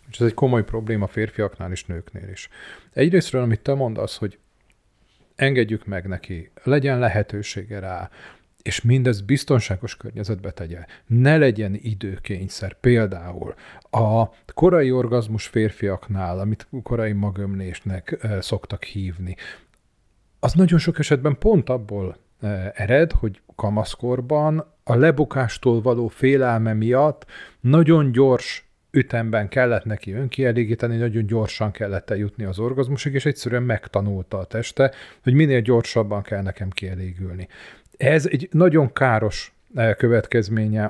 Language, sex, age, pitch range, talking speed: Hungarian, male, 40-59, 100-130 Hz, 115 wpm